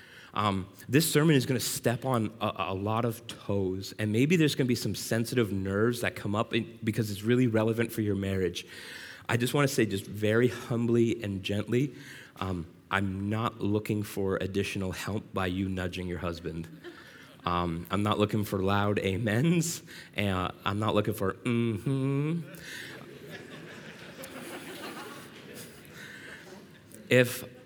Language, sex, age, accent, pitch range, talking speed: English, male, 30-49, American, 100-120 Hz, 150 wpm